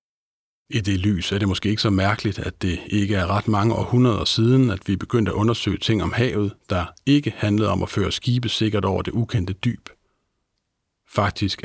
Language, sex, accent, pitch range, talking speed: Danish, male, native, 95-115 Hz, 195 wpm